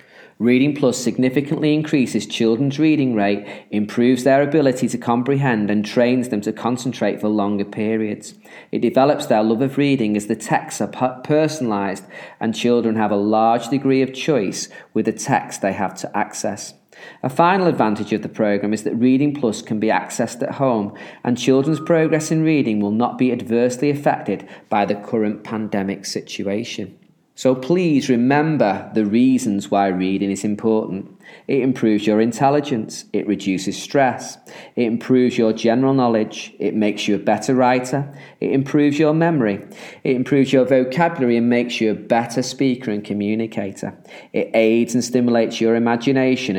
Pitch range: 105-135 Hz